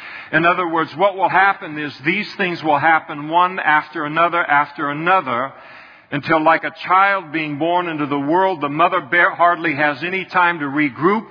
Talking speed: 175 wpm